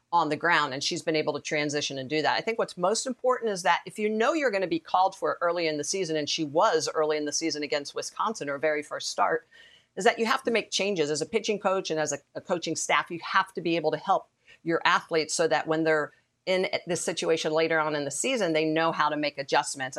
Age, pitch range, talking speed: 50-69, 150-170 Hz, 265 wpm